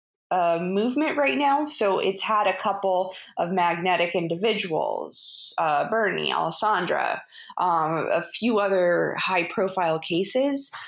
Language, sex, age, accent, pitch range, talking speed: English, female, 20-39, American, 170-200 Hz, 120 wpm